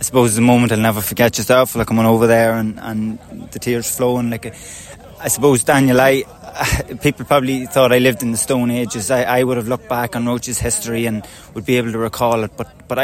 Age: 20-39